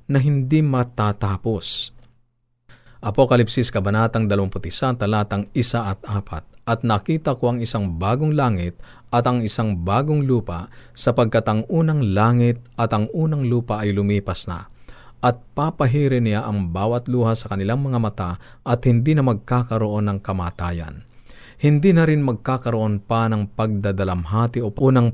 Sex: male